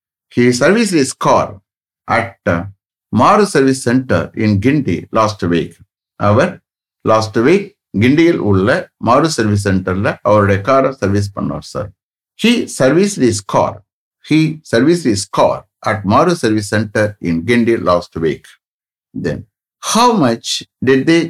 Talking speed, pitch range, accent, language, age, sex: 125 wpm, 100-135 Hz, Indian, English, 60-79, male